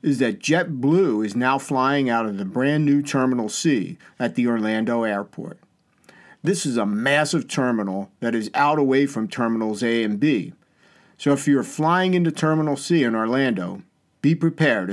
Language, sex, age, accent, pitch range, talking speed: English, male, 50-69, American, 115-150 Hz, 170 wpm